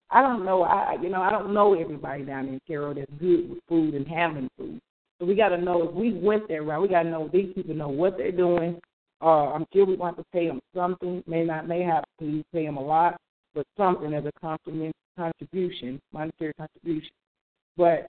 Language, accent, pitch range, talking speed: English, American, 150-185 Hz, 220 wpm